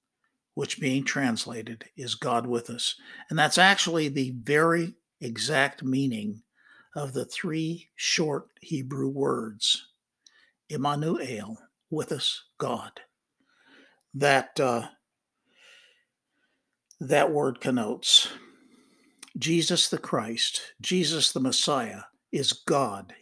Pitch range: 135-195 Hz